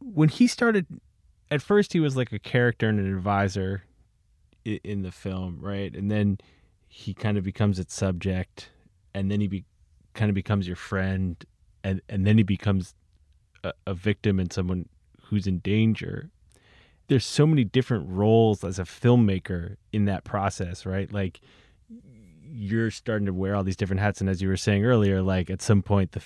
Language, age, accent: English, 20-39, American